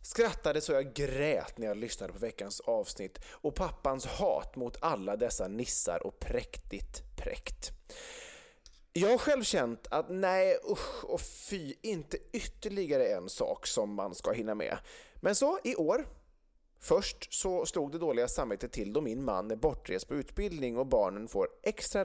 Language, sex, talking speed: English, male, 165 wpm